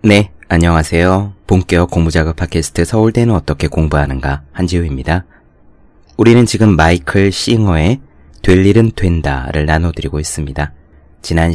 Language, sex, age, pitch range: Korean, male, 30-49, 80-110 Hz